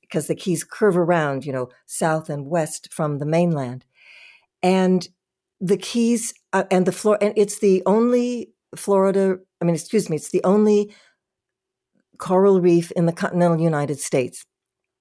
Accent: American